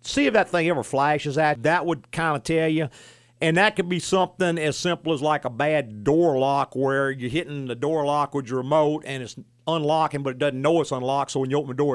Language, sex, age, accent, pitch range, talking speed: English, male, 50-69, American, 135-165 Hz, 250 wpm